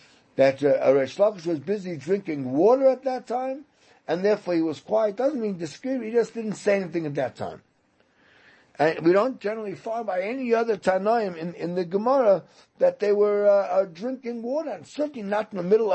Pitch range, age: 145-210 Hz, 60-79